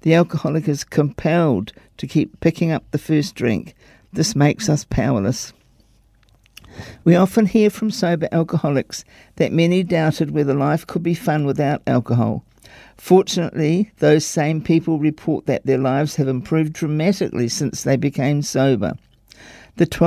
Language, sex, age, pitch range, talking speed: English, male, 50-69, 140-170 Hz, 140 wpm